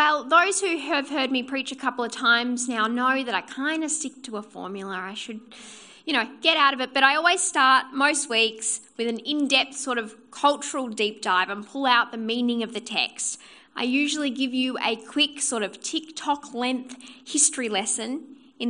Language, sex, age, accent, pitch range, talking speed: English, female, 10-29, Australian, 220-280 Hz, 205 wpm